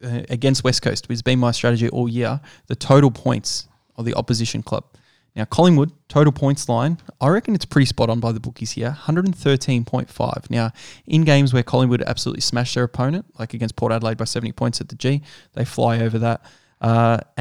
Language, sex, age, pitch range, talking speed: English, male, 20-39, 115-130 Hz, 195 wpm